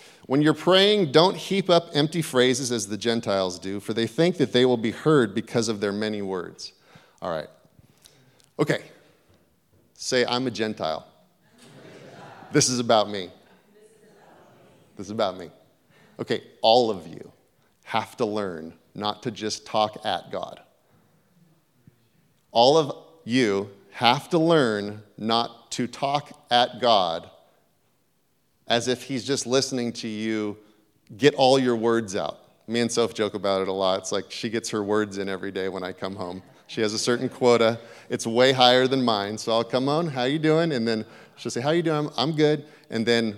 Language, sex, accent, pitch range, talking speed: English, male, American, 110-150 Hz, 175 wpm